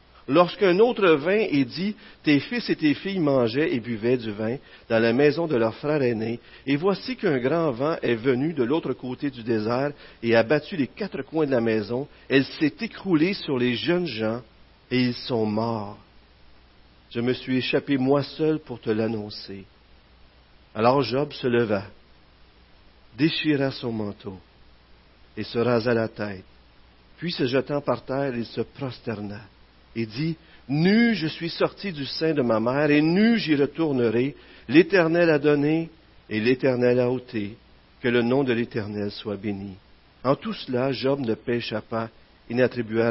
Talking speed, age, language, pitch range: 170 wpm, 50-69, French, 110-150 Hz